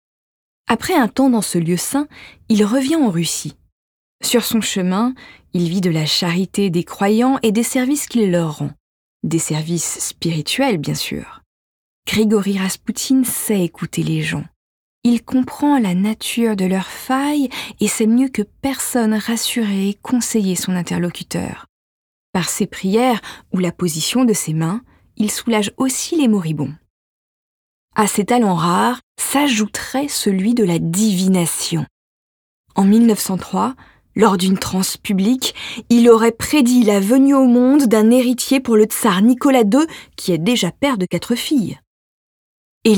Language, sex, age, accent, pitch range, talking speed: French, female, 20-39, French, 185-250 Hz, 150 wpm